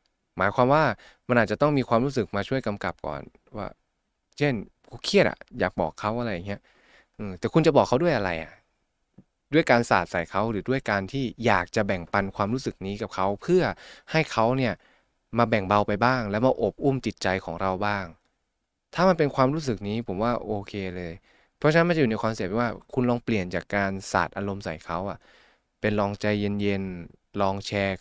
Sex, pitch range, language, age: male, 95-120 Hz, Thai, 20-39